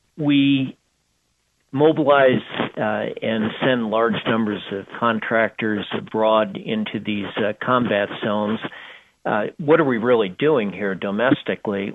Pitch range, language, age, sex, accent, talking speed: 110-140 Hz, English, 50-69, male, American, 115 wpm